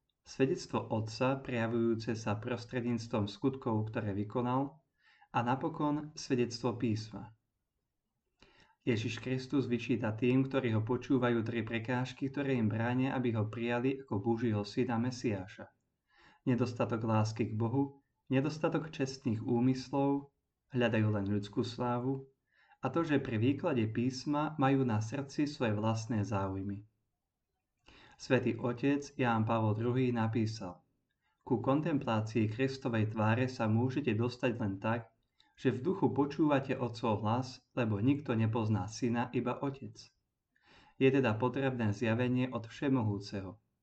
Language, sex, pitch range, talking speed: Slovak, male, 110-135 Hz, 120 wpm